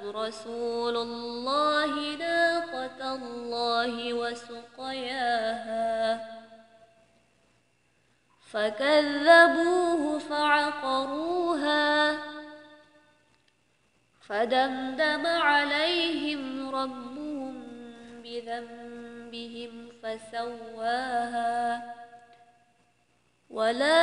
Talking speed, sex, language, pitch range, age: 30 wpm, female, Indonesian, 235-295 Hz, 20-39